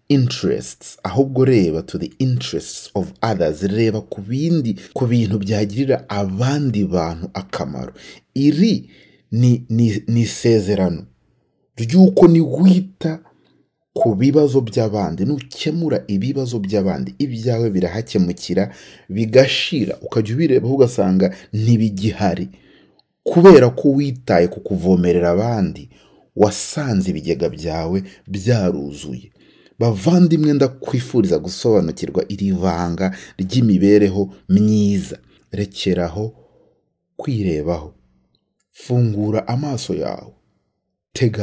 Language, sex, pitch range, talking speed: English, male, 95-130 Hz, 90 wpm